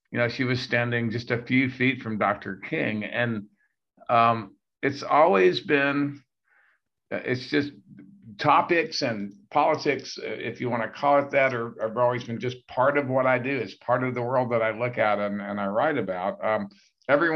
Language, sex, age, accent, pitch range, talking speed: English, male, 50-69, American, 110-135 Hz, 190 wpm